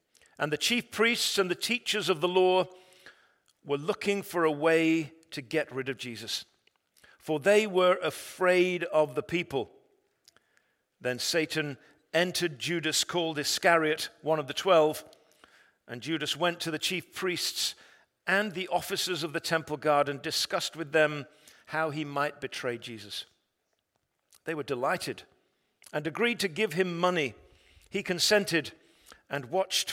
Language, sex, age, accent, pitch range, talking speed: English, male, 50-69, British, 155-220 Hz, 145 wpm